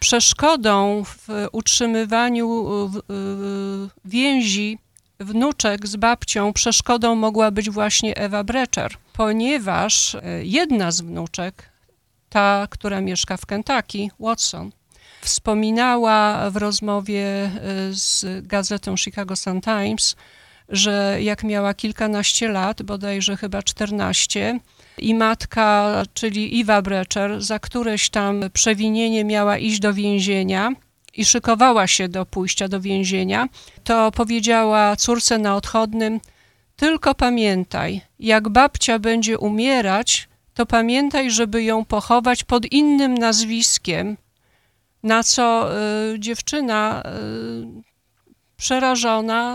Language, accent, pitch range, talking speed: Polish, native, 200-235 Hz, 100 wpm